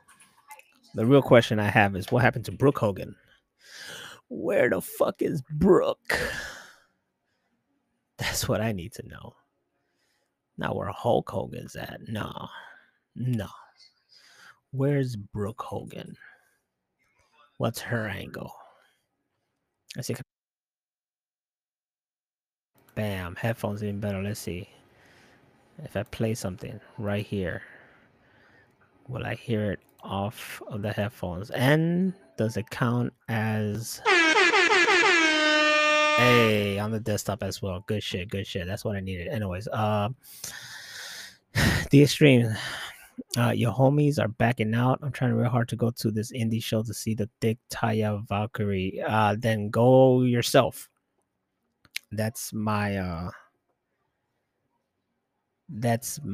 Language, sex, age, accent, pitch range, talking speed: English, male, 30-49, American, 105-130 Hz, 120 wpm